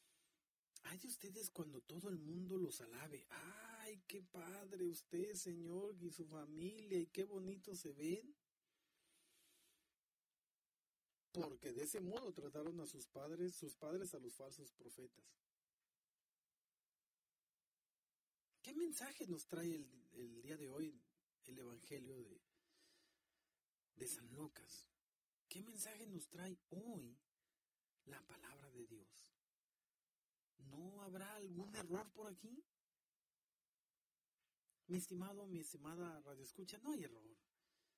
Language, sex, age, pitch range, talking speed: English, male, 50-69, 155-200 Hz, 115 wpm